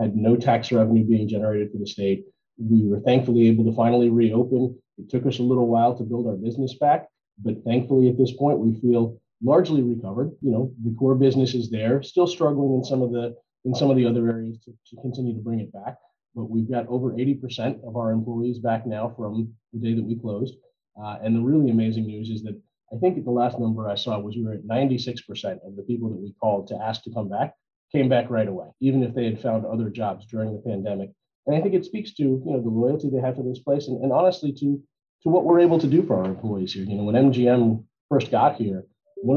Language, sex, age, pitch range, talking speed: English, male, 30-49, 110-130 Hz, 240 wpm